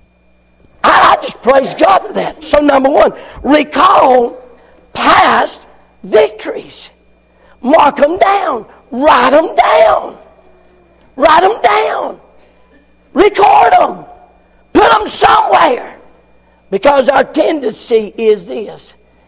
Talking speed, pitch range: 95 wpm, 240-375 Hz